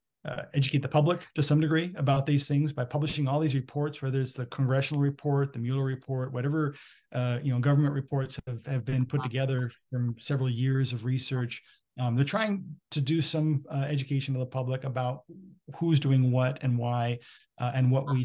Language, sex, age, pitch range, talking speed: English, male, 40-59, 125-145 Hz, 195 wpm